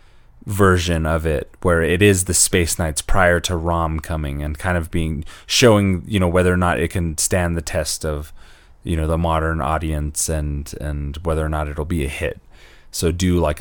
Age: 30-49